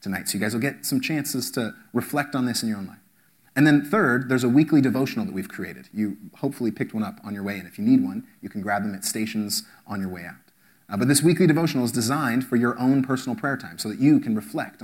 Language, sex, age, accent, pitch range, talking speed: English, male, 30-49, American, 115-155 Hz, 270 wpm